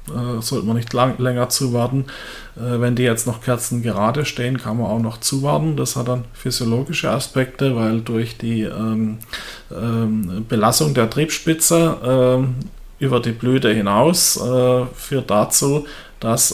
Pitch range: 110-125 Hz